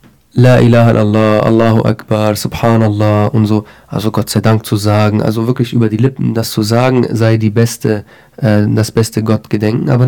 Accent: German